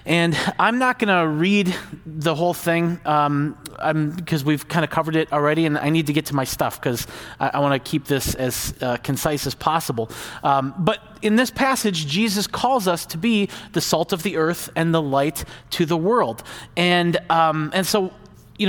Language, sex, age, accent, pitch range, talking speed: English, male, 30-49, American, 145-185 Hz, 195 wpm